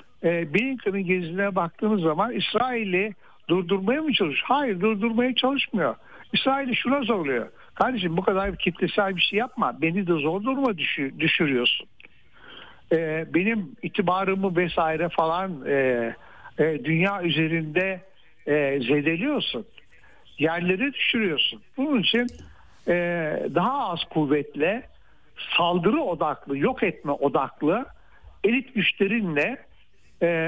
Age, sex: 60-79, male